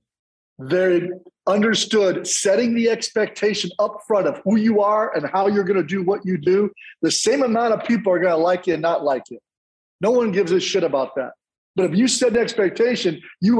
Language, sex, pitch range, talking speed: English, male, 170-210 Hz, 210 wpm